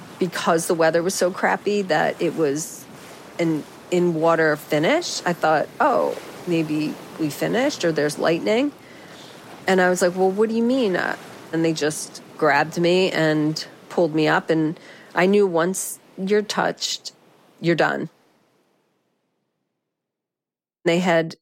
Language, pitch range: English, 150-175 Hz